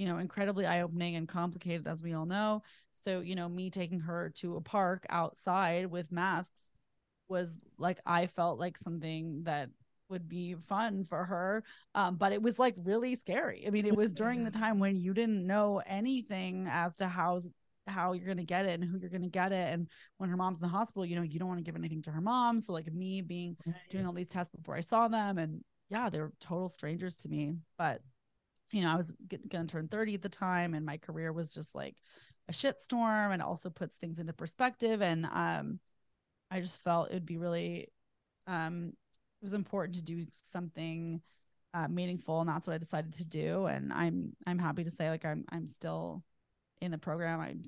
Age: 20-39